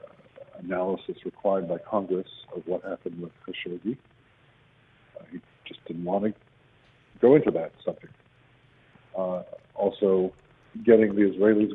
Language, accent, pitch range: English, American, 90-125 Hz